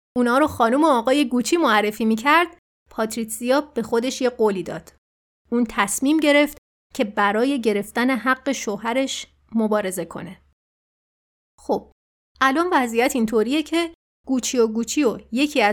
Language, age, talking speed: Persian, 30-49, 130 wpm